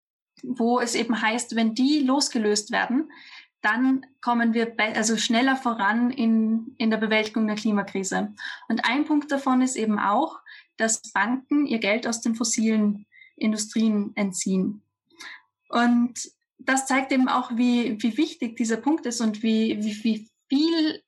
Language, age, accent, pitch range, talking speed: German, 10-29, German, 215-260 Hz, 150 wpm